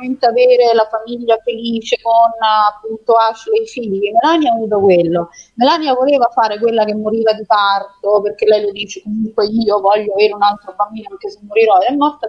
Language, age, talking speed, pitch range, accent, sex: Italian, 30-49, 185 wpm, 185-235 Hz, native, female